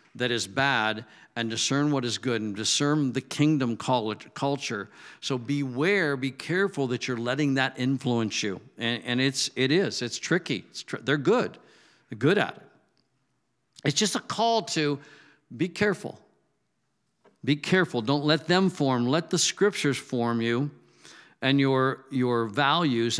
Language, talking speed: English, 155 wpm